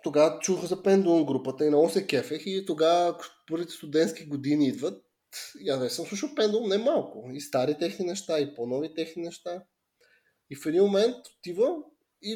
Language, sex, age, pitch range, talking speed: Bulgarian, male, 20-39, 145-200 Hz, 175 wpm